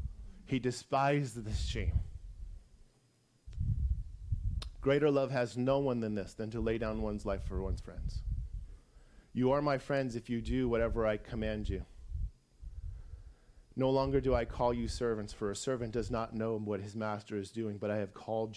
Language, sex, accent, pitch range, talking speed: English, male, American, 90-120 Hz, 170 wpm